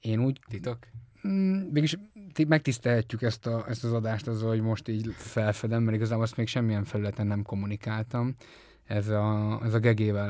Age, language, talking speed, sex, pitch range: 20-39, Hungarian, 170 wpm, male, 105-125 Hz